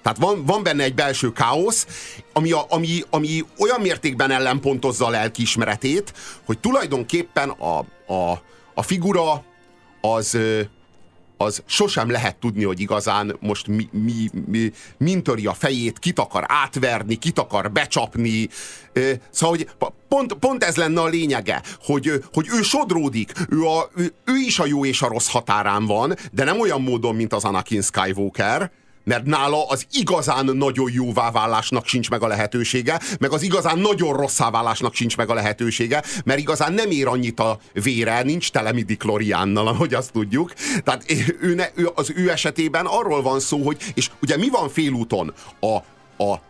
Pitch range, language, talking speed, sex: 110-160 Hz, Hungarian, 155 wpm, male